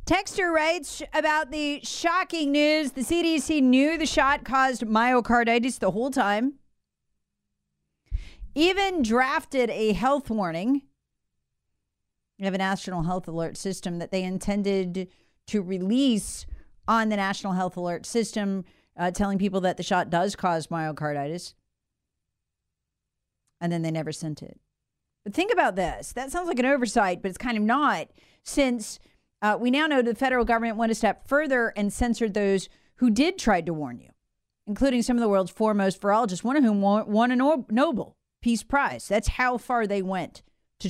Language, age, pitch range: English, 40-59, 170-255 Hz